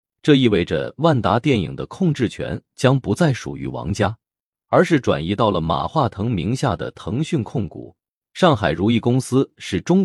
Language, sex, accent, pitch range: Chinese, male, native, 100-145 Hz